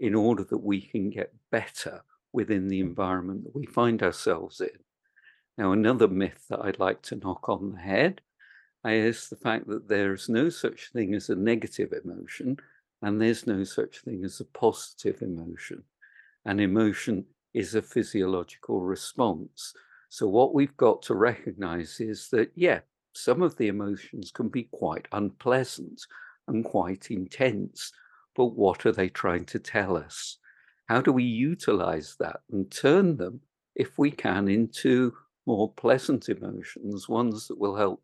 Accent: British